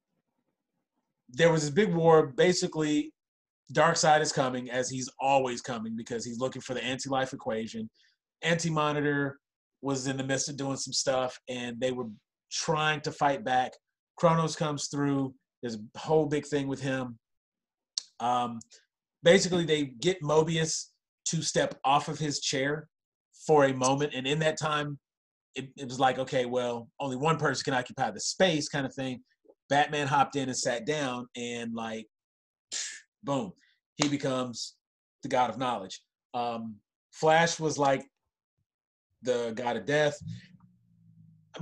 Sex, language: male, English